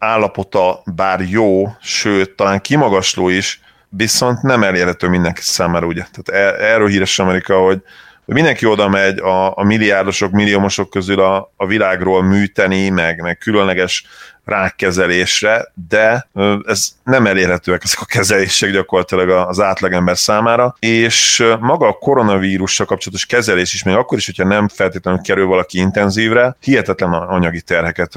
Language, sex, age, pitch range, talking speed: Hungarian, male, 30-49, 95-110 Hz, 140 wpm